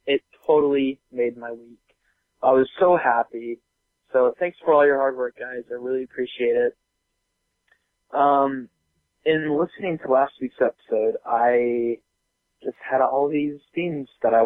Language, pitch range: English, 120-145 Hz